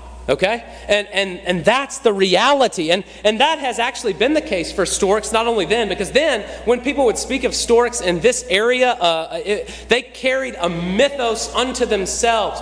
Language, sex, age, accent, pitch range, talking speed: English, male, 30-49, American, 185-270 Hz, 180 wpm